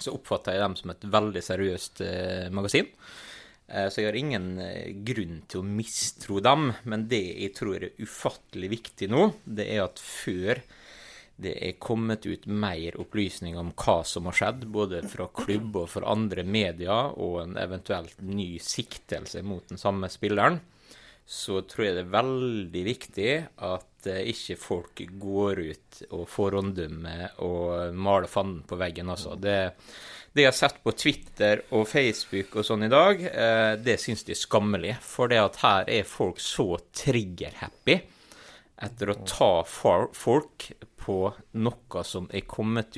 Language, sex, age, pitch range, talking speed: English, male, 30-49, 90-110 Hz, 165 wpm